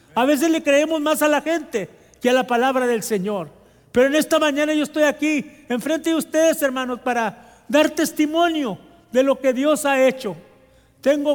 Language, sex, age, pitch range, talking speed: English, male, 50-69, 235-290 Hz, 190 wpm